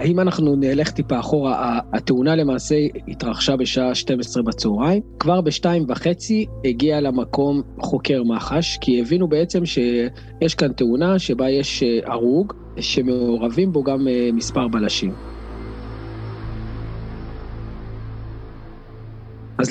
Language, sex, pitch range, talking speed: Hebrew, male, 120-165 Hz, 100 wpm